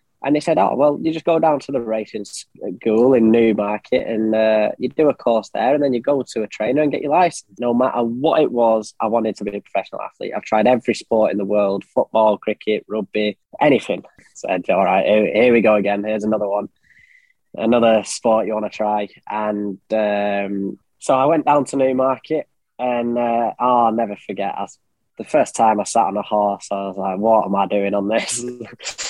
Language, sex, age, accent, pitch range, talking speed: German, male, 10-29, British, 105-120 Hz, 220 wpm